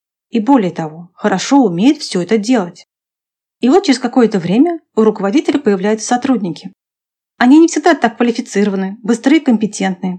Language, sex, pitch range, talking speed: Russian, female, 195-270 Hz, 145 wpm